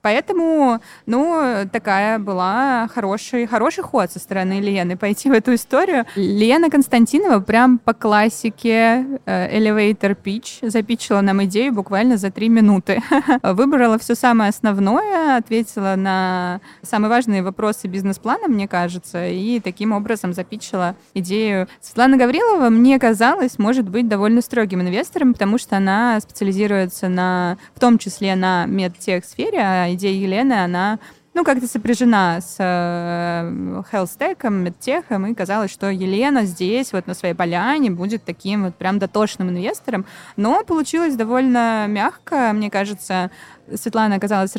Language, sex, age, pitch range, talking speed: Russian, female, 20-39, 190-240 Hz, 130 wpm